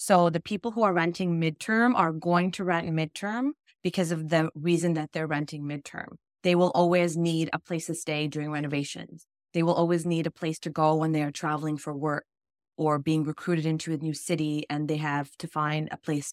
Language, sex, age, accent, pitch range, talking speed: English, female, 20-39, American, 155-180 Hz, 215 wpm